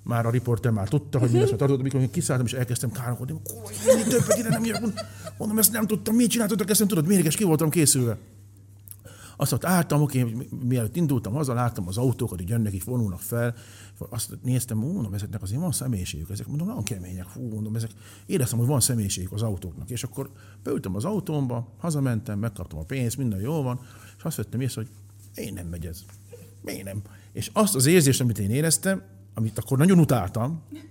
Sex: male